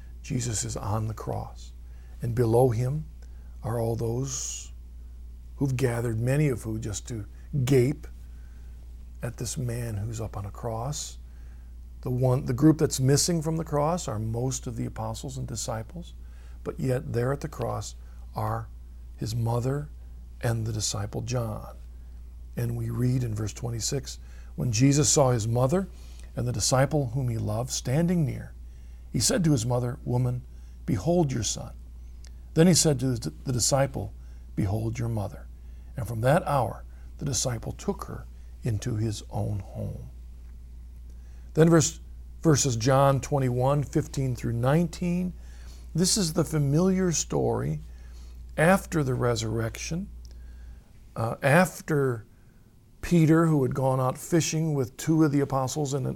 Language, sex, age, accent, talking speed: English, male, 50-69, American, 140 wpm